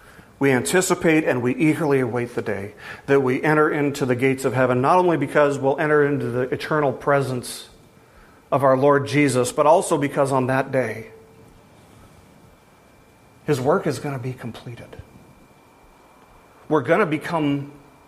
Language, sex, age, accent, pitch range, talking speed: English, male, 40-59, American, 125-155 Hz, 155 wpm